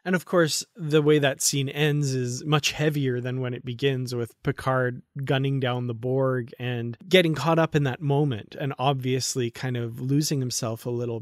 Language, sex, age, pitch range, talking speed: English, male, 30-49, 125-145 Hz, 195 wpm